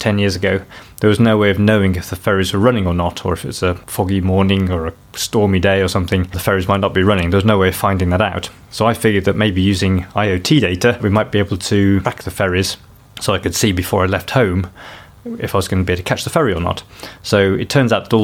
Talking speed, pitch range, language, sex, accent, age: 275 wpm, 95-110 Hz, English, male, British, 20-39